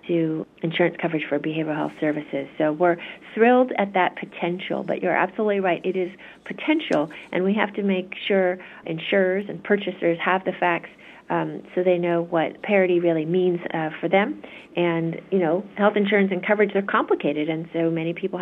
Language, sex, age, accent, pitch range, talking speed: English, female, 50-69, American, 165-185 Hz, 180 wpm